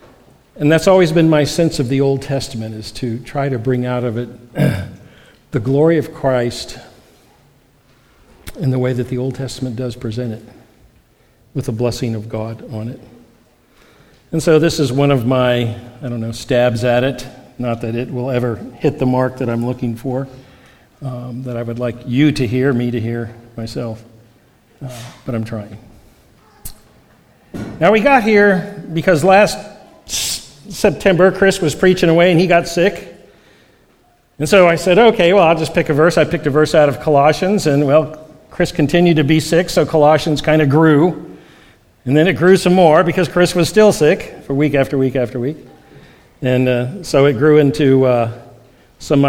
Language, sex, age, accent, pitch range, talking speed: English, male, 50-69, American, 120-160 Hz, 185 wpm